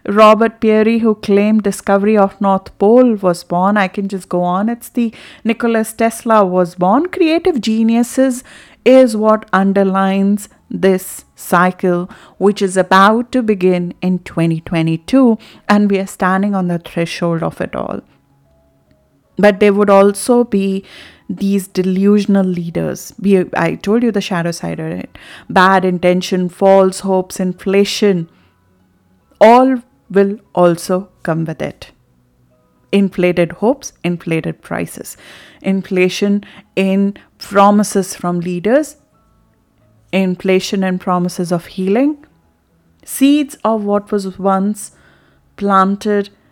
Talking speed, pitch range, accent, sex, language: 120 wpm, 180-220 Hz, Indian, female, English